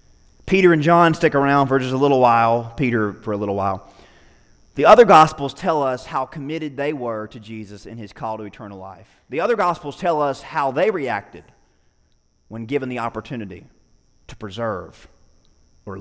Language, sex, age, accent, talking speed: English, male, 30-49, American, 175 wpm